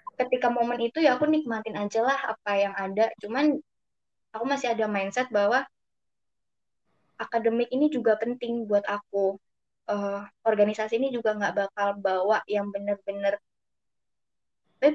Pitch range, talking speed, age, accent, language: 205-250 Hz, 135 wpm, 20-39, native, Indonesian